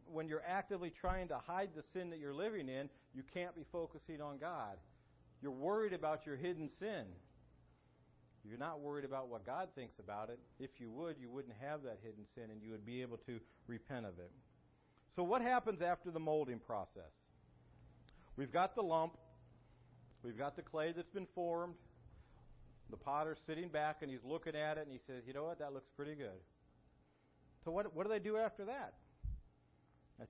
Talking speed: 190 wpm